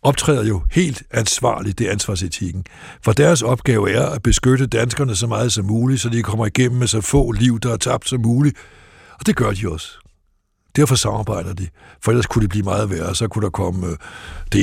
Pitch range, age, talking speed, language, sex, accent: 100-125 Hz, 60-79, 210 wpm, Danish, male, native